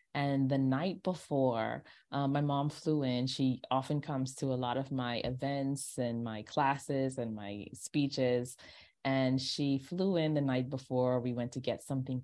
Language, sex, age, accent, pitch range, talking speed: English, female, 20-39, American, 130-165 Hz, 175 wpm